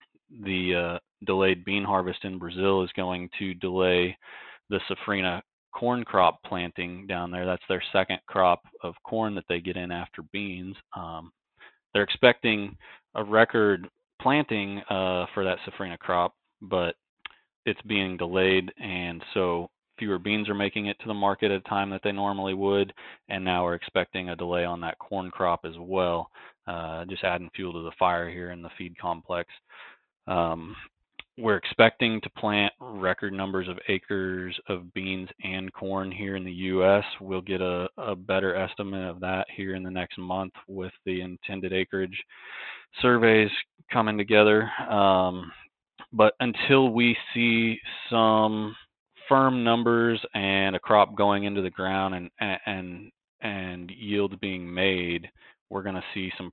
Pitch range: 90-100 Hz